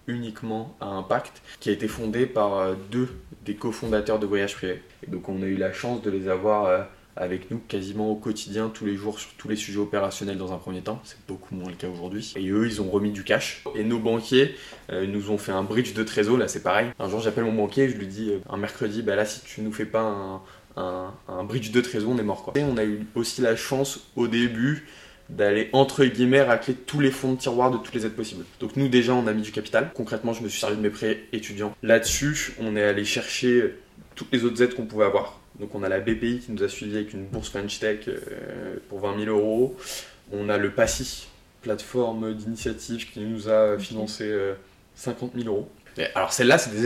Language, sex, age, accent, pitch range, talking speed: French, male, 20-39, French, 100-125 Hz, 235 wpm